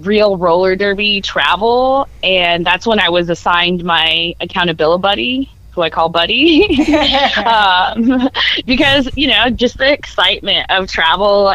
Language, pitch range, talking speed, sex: English, 175-235 Hz, 135 wpm, female